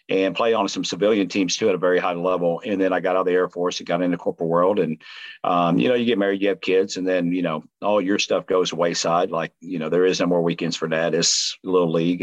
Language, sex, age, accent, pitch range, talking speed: English, male, 50-69, American, 95-120 Hz, 285 wpm